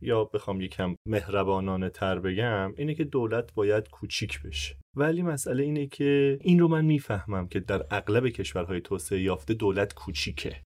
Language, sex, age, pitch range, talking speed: Persian, male, 30-49, 100-125 Hz, 155 wpm